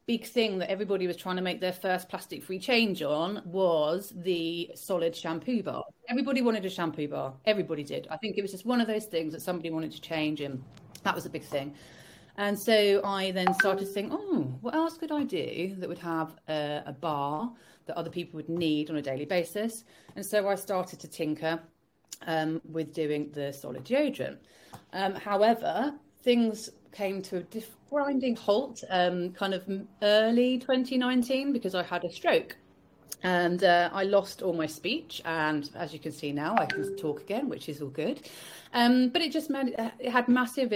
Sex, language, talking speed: female, English, 195 wpm